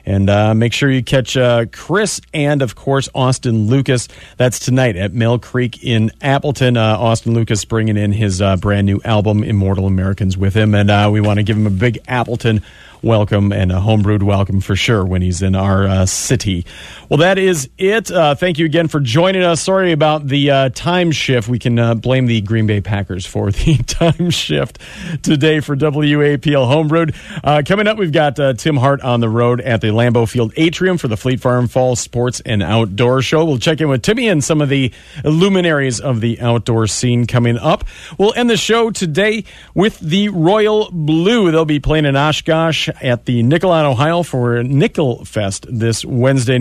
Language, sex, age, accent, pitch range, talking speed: English, male, 40-59, American, 110-155 Hz, 195 wpm